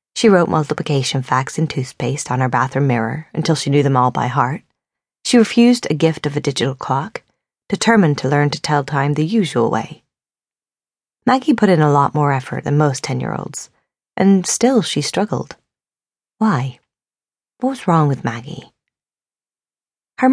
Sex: female